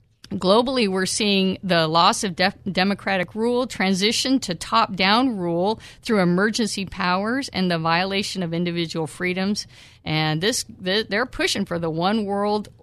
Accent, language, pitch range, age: American, English, 170-210 Hz, 50-69